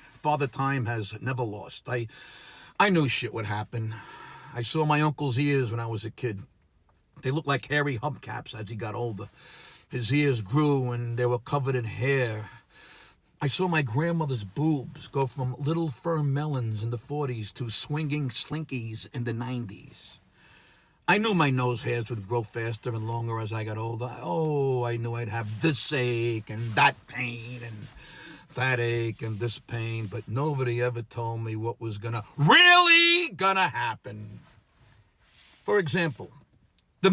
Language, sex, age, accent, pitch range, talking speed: English, male, 50-69, American, 120-190 Hz, 165 wpm